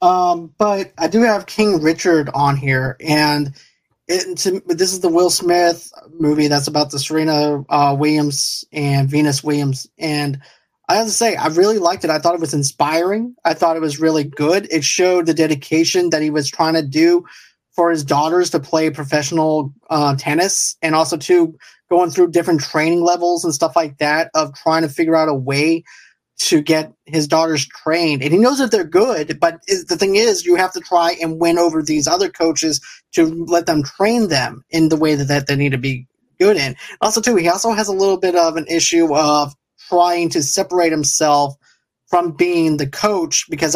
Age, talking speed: 20-39, 195 wpm